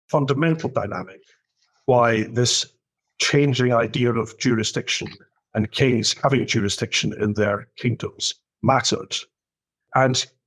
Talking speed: 105 wpm